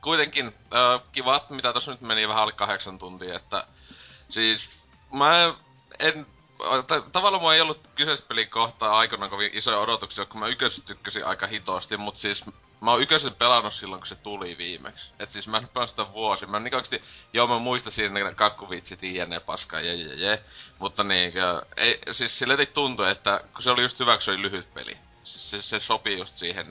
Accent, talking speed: native, 170 wpm